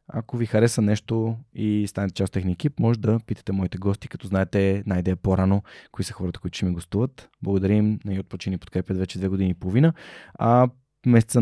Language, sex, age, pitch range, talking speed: Bulgarian, male, 20-39, 95-115 Hz, 205 wpm